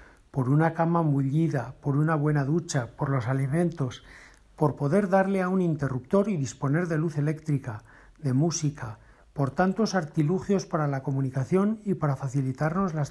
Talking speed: 155 wpm